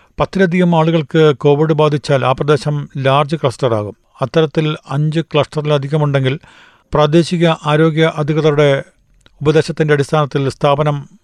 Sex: male